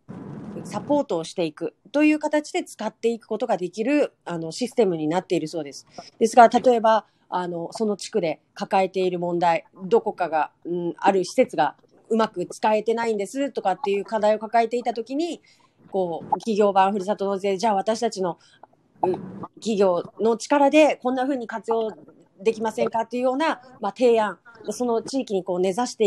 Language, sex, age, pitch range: Japanese, female, 30-49, 175-230 Hz